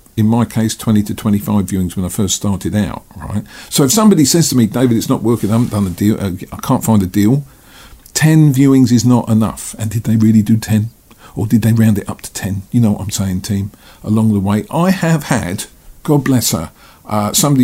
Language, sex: English, male